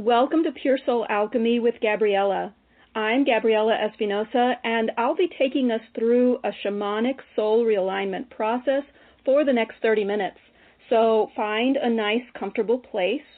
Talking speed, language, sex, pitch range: 145 wpm, English, female, 210-245 Hz